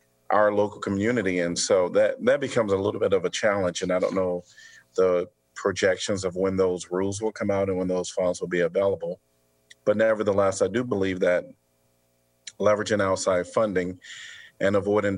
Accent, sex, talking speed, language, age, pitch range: American, male, 180 wpm, English, 40-59, 95-110 Hz